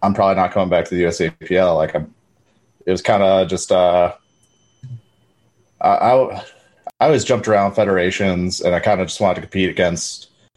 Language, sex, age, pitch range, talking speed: English, male, 30-49, 85-105 Hz, 180 wpm